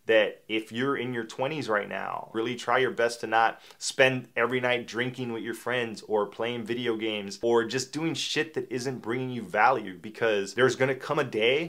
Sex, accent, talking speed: male, American, 205 wpm